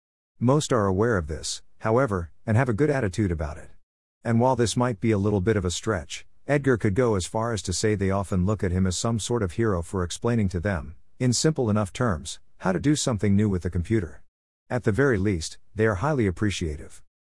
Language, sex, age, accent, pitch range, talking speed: English, male, 50-69, American, 85-115 Hz, 230 wpm